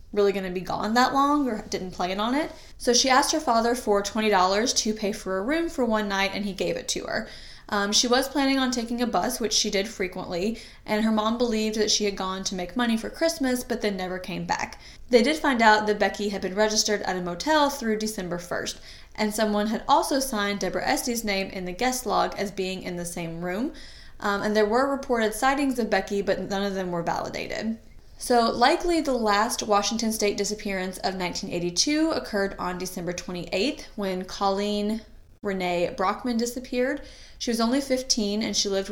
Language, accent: English, American